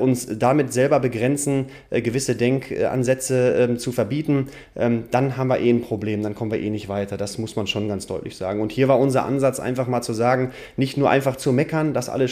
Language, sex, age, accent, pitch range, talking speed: German, male, 30-49, German, 120-135 Hz, 210 wpm